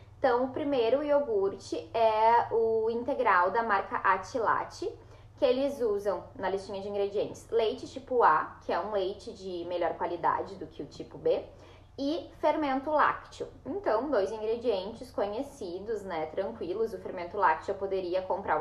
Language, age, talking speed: Portuguese, 10-29, 150 wpm